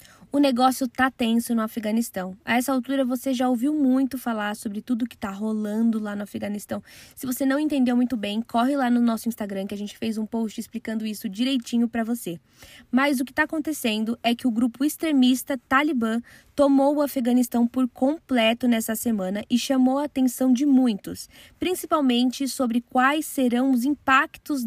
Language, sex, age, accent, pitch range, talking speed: Portuguese, female, 10-29, Brazilian, 230-275 Hz, 180 wpm